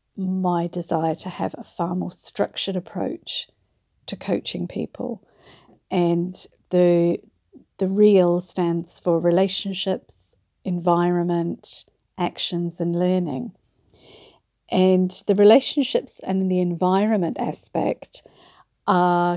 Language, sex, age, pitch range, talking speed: English, female, 50-69, 175-205 Hz, 95 wpm